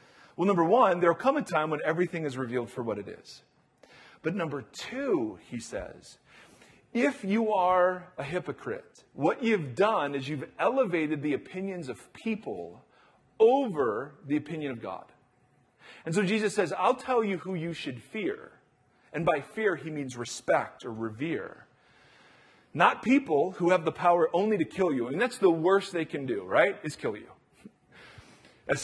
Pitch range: 140-195 Hz